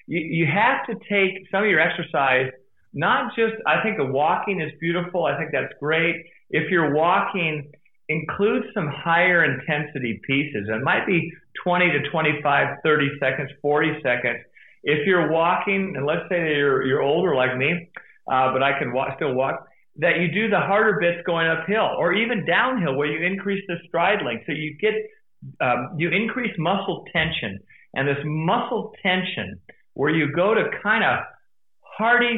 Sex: male